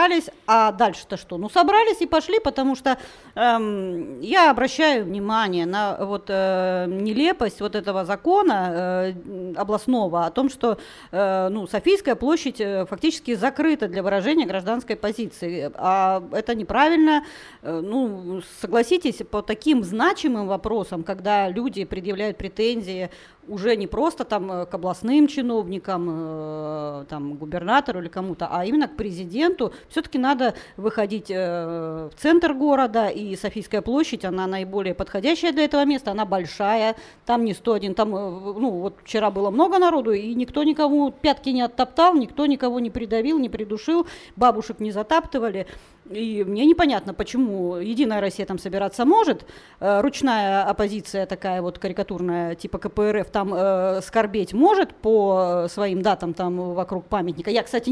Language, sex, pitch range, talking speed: Russian, female, 190-270 Hz, 145 wpm